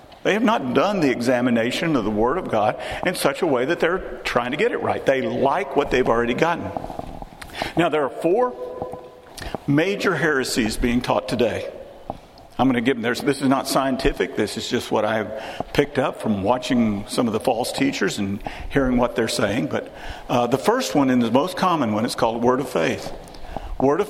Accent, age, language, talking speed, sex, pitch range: American, 50-69, English, 205 wpm, male, 120-150 Hz